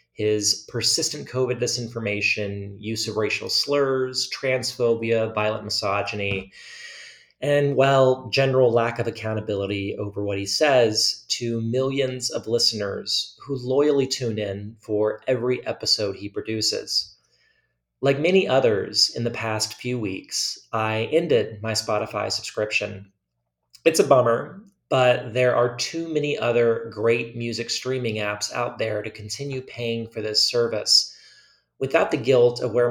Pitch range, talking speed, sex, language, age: 105-125 Hz, 135 wpm, male, English, 30-49